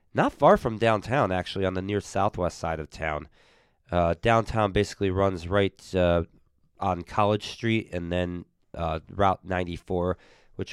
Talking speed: 150 wpm